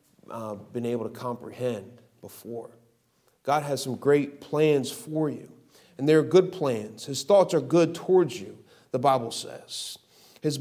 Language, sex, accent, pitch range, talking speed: English, male, American, 115-165 Hz, 155 wpm